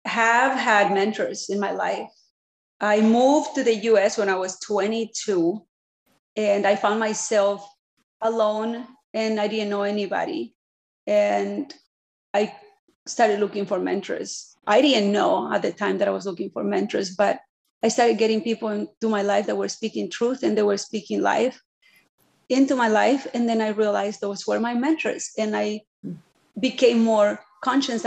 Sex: female